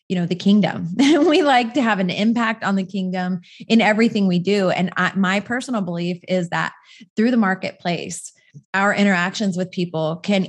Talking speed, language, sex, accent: 175 wpm, English, female, American